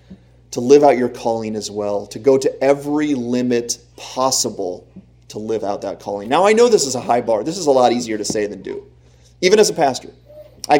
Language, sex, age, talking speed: English, male, 30-49, 220 wpm